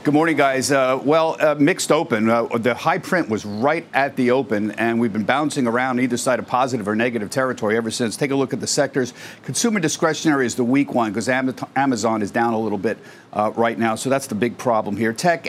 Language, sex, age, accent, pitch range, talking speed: English, male, 50-69, American, 115-145 Hz, 235 wpm